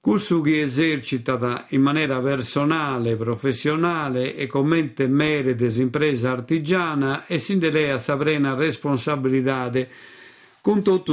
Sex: male